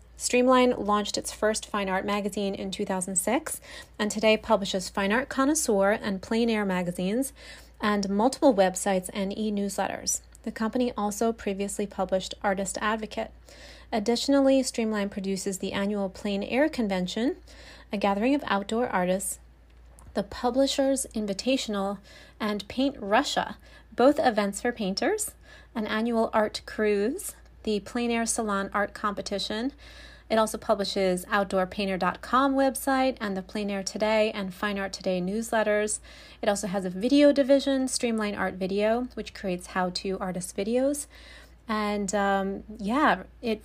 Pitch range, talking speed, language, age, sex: 195-235 Hz, 135 wpm, English, 30-49, female